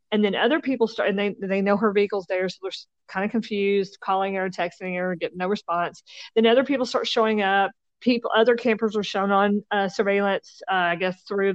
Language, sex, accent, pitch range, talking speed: English, female, American, 185-225 Hz, 220 wpm